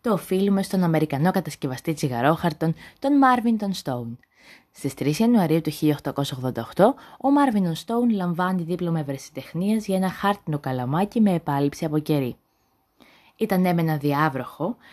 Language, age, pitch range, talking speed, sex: Greek, 20-39, 150-225 Hz, 125 wpm, female